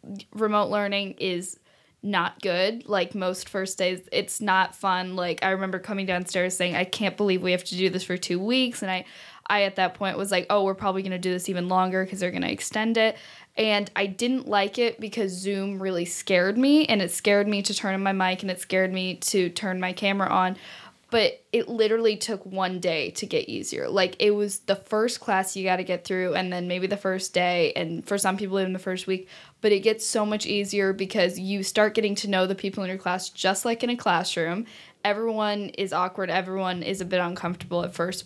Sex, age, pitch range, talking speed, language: female, 10-29, 185-210 Hz, 230 wpm, English